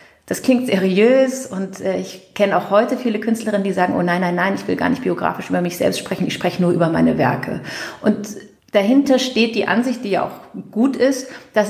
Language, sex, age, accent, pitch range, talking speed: German, female, 30-49, German, 180-220 Hz, 220 wpm